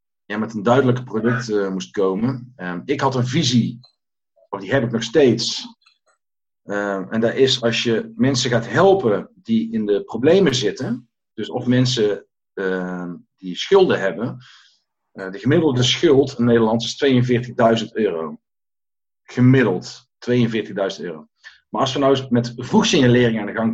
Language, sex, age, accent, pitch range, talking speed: Dutch, male, 50-69, Dutch, 115-135 Hz, 150 wpm